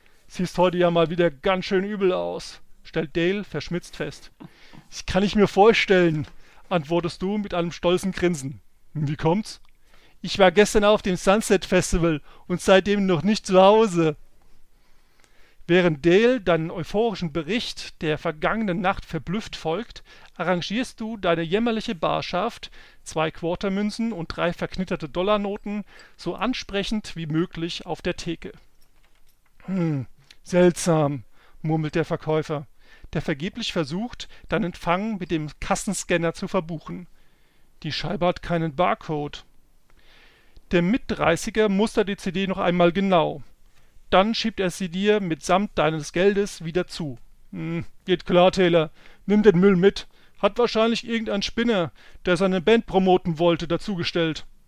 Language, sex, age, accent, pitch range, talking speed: German, male, 40-59, German, 165-200 Hz, 135 wpm